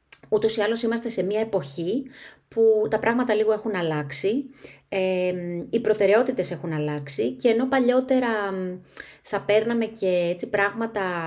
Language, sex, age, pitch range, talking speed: Greek, female, 30-49, 175-230 Hz, 130 wpm